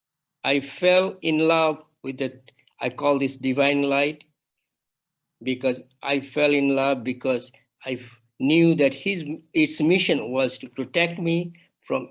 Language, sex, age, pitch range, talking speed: English, male, 60-79, 135-160 Hz, 140 wpm